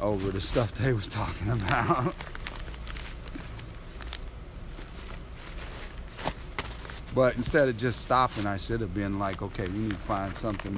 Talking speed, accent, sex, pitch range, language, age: 130 wpm, American, male, 100-150 Hz, English, 50-69